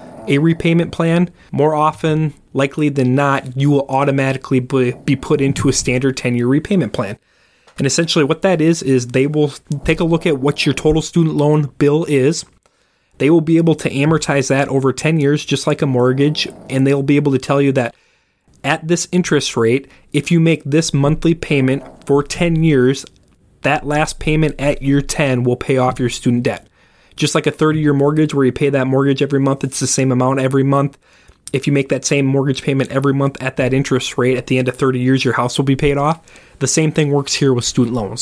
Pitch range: 130-155 Hz